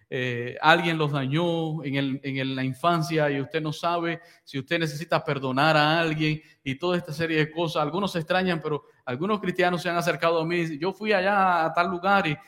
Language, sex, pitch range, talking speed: English, male, 140-175 Hz, 195 wpm